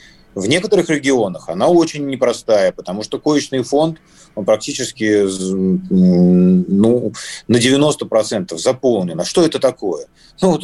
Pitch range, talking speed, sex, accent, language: 110-165 Hz, 120 wpm, male, native, Russian